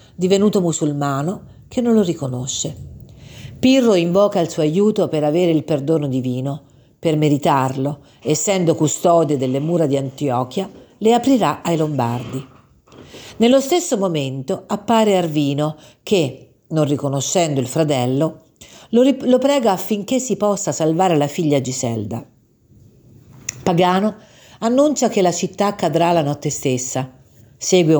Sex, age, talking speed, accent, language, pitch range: female, 50-69, 120 wpm, native, Italian, 135-190 Hz